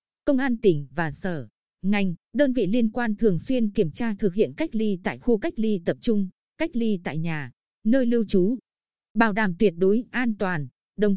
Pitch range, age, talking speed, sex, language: 185-235 Hz, 20-39, 205 wpm, female, Vietnamese